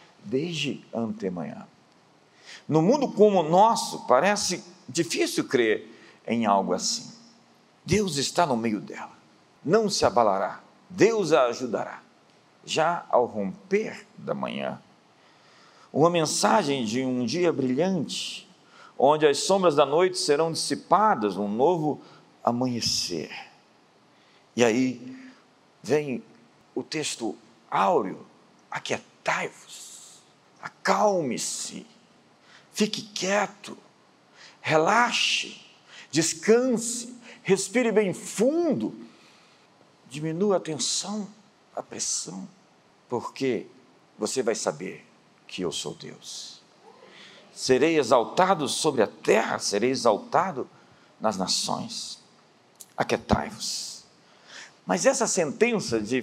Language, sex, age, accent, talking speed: Portuguese, male, 50-69, Brazilian, 95 wpm